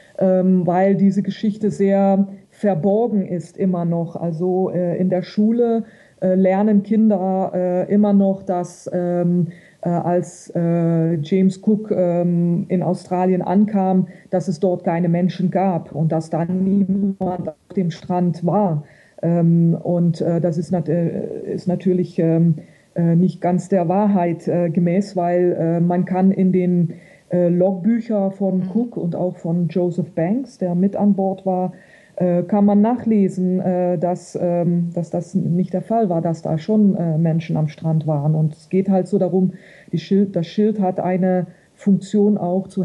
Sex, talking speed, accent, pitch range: female, 165 wpm, German, 175-195 Hz